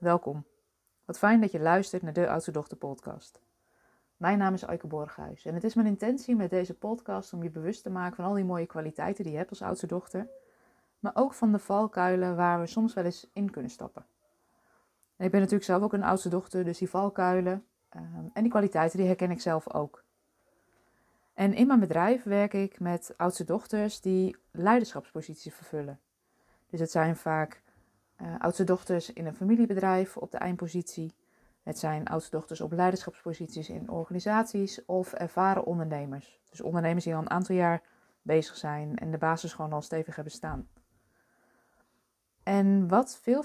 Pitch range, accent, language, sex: 165-200 Hz, Dutch, Dutch, female